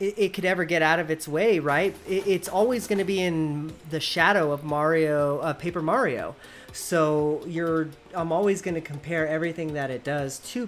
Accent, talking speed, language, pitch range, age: American, 190 wpm, English, 140-170 Hz, 30-49